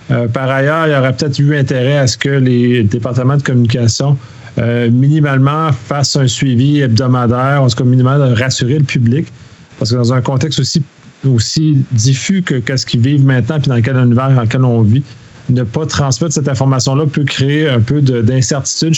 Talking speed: 195 wpm